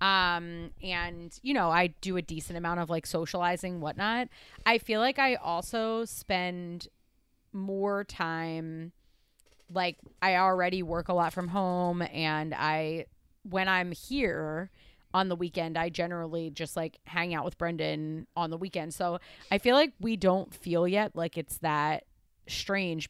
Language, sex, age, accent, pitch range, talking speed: English, female, 30-49, American, 165-195 Hz, 155 wpm